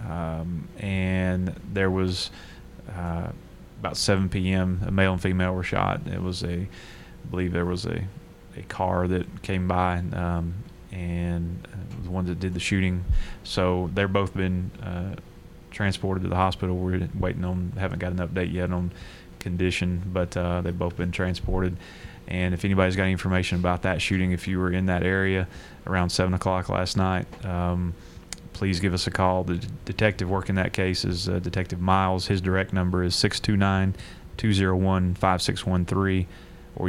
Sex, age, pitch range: male, 30-49, 90-95 Hz